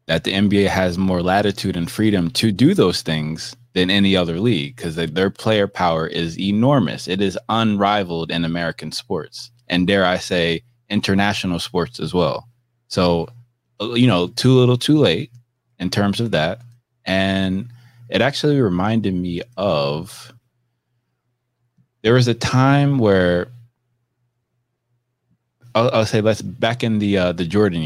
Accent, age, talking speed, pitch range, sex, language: American, 20-39, 145 wpm, 90-120 Hz, male, English